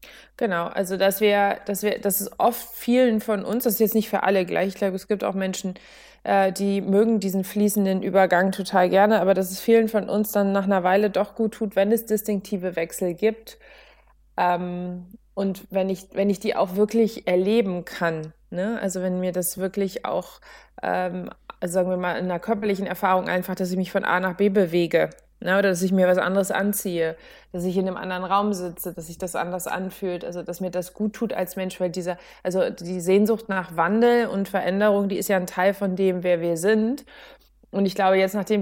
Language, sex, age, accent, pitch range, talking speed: German, female, 20-39, German, 185-210 Hz, 215 wpm